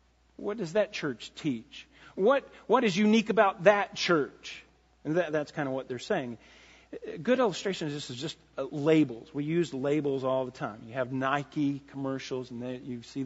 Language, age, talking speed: English, 40-59, 185 wpm